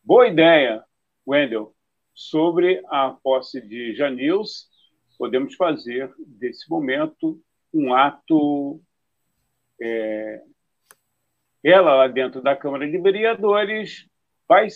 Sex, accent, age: male, Brazilian, 50-69